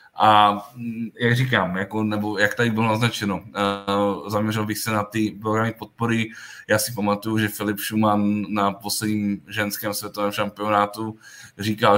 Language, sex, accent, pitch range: Czech, male, native, 105-115 Hz